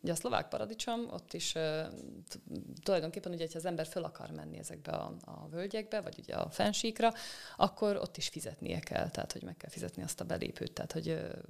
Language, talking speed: Hungarian, 190 wpm